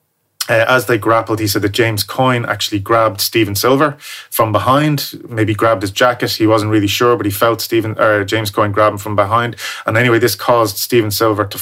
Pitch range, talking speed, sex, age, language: 105-120 Hz, 205 wpm, male, 30-49, English